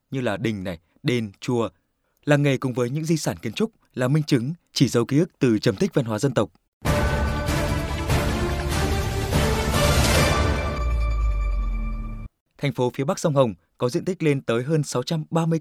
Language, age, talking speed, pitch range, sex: Vietnamese, 20-39, 160 wpm, 115-160 Hz, male